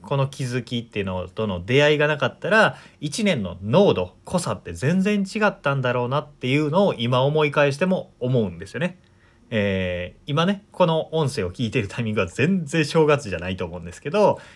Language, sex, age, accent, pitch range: Japanese, male, 30-49, native, 105-155 Hz